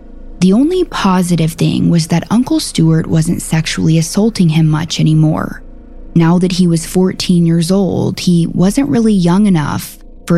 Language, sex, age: English, female, 20-39